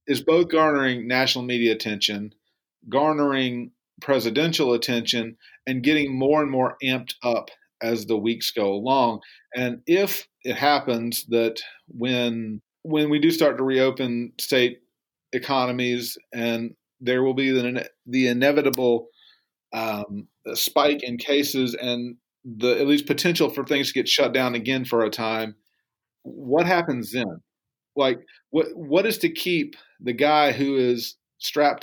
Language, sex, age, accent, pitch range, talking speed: English, male, 40-59, American, 120-145 Hz, 140 wpm